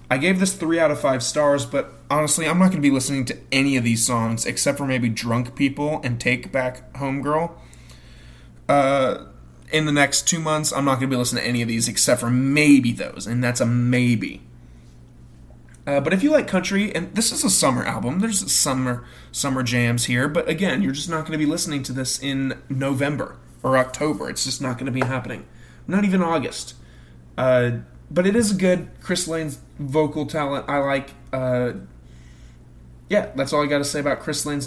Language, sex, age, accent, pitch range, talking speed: English, male, 20-39, American, 120-145 Hz, 205 wpm